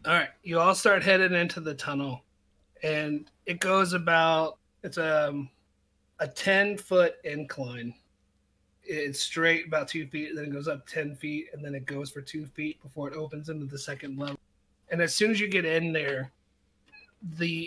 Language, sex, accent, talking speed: English, male, American, 185 wpm